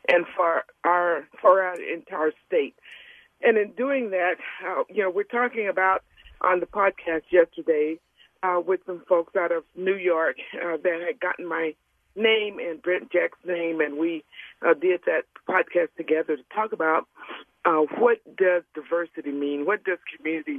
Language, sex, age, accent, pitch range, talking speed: English, female, 60-79, American, 160-215 Hz, 165 wpm